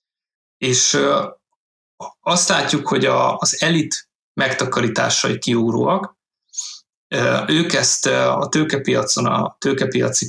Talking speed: 80 wpm